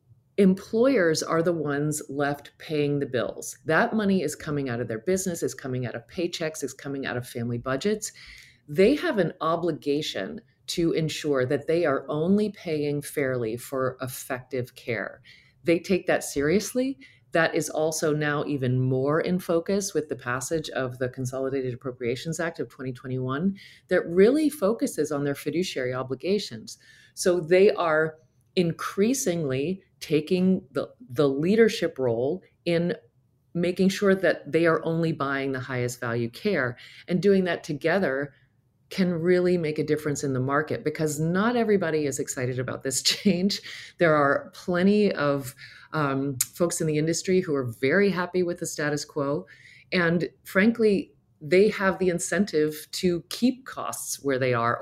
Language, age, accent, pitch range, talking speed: English, 40-59, American, 135-180 Hz, 155 wpm